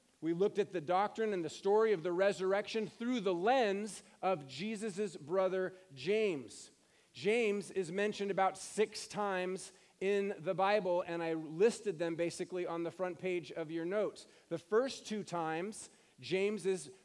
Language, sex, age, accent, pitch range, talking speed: English, male, 40-59, American, 180-215 Hz, 160 wpm